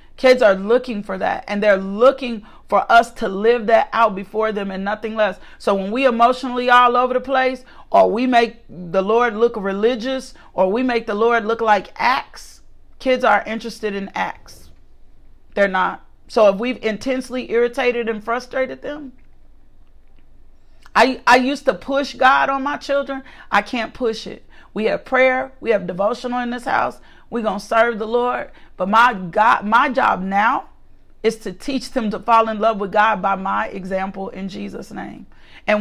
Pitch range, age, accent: 200-250 Hz, 40-59, American